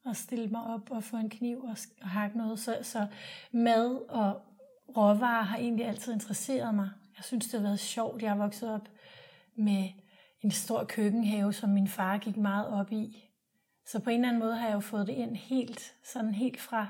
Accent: native